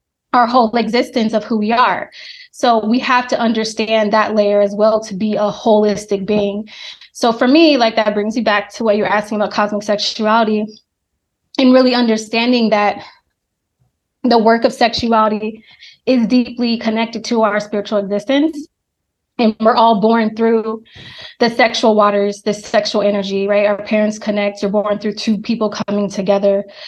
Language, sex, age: English, female, 20-39